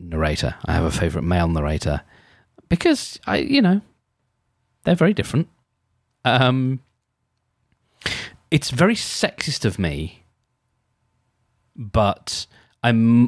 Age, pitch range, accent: 30-49, 95-125 Hz, British